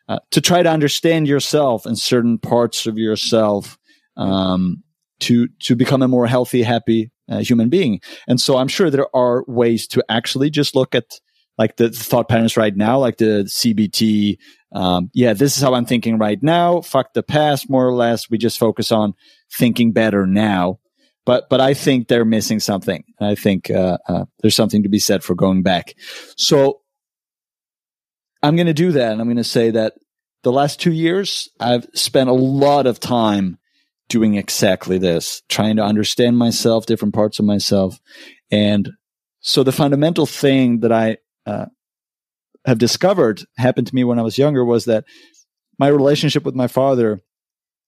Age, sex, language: 30-49, male, English